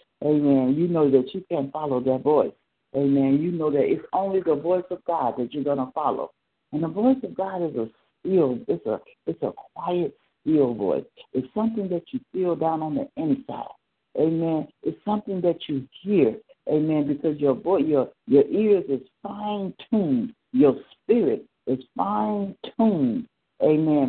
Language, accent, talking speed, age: English, American, 170 wpm, 60-79